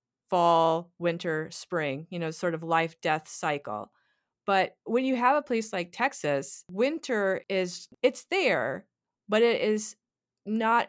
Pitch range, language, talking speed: 170-205 Hz, English, 140 wpm